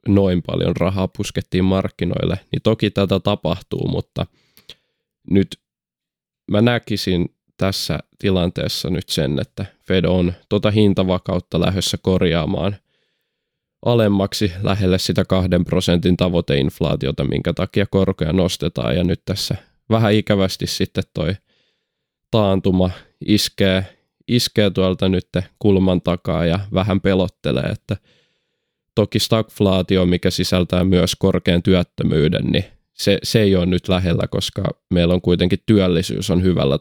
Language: Finnish